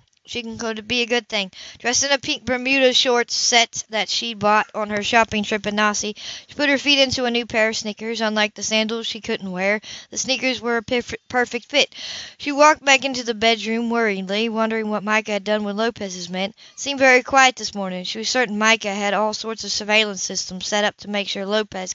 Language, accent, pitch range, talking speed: English, American, 205-240 Hz, 225 wpm